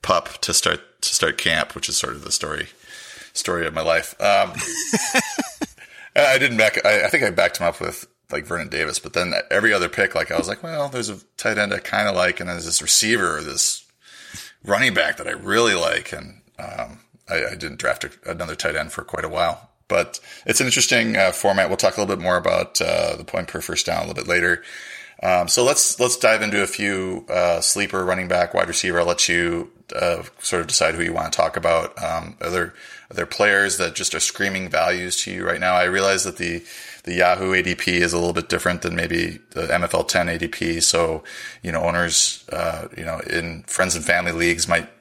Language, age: English, 30-49